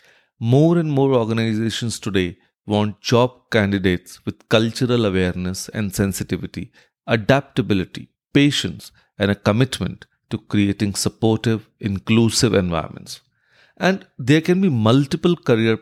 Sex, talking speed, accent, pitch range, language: male, 110 wpm, Indian, 100-130 Hz, English